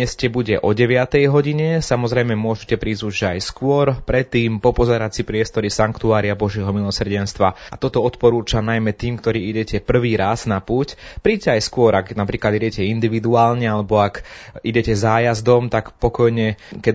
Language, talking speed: Slovak, 150 wpm